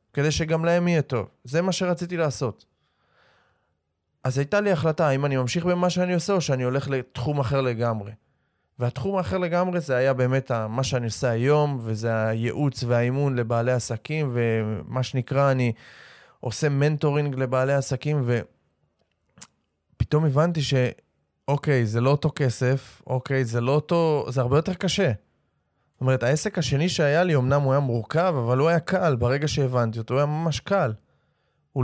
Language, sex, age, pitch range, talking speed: Hebrew, male, 20-39, 125-155 Hz, 160 wpm